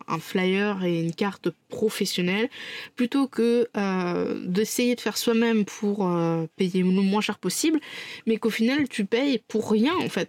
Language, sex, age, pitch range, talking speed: French, female, 20-39, 185-230 Hz, 170 wpm